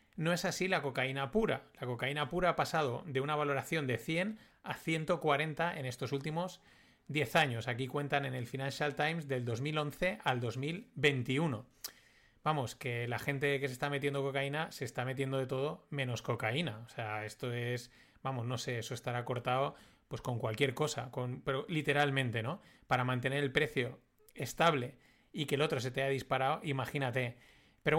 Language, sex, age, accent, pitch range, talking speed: Spanish, male, 30-49, Spanish, 125-155 Hz, 175 wpm